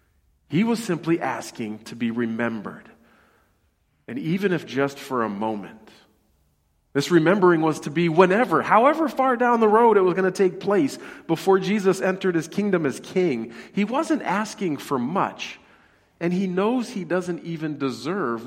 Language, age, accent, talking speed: English, 40-59, American, 160 wpm